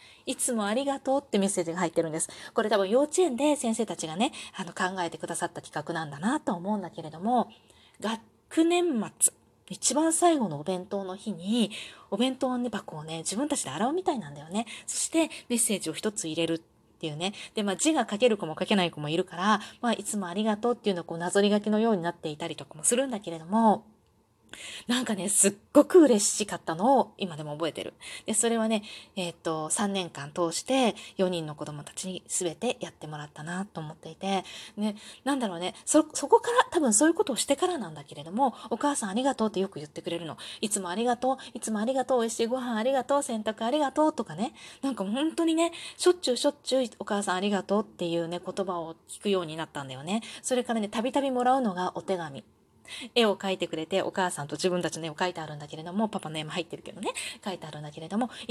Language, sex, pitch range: Japanese, female, 175-255 Hz